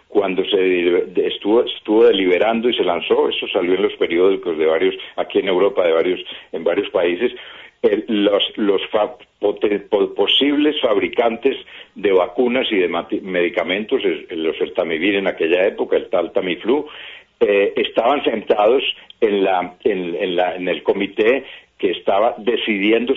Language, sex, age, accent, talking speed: Spanish, male, 60-79, Spanish, 155 wpm